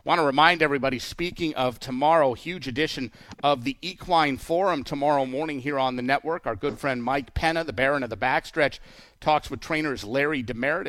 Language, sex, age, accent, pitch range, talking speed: English, male, 50-69, American, 125-155 Hz, 185 wpm